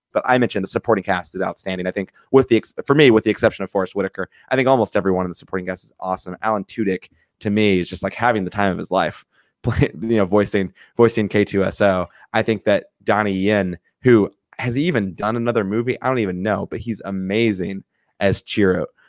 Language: English